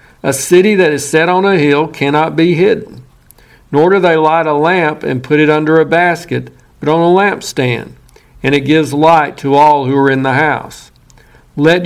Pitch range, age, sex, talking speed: 135-175 Hz, 50-69, male, 195 wpm